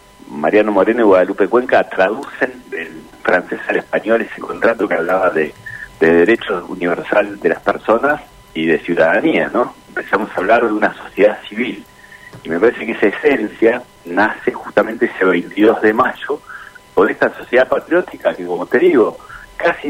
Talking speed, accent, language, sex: 160 wpm, Argentinian, Spanish, male